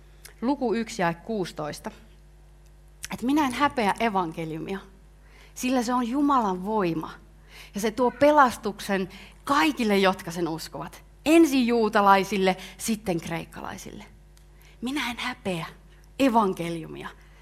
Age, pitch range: 30-49, 180-245 Hz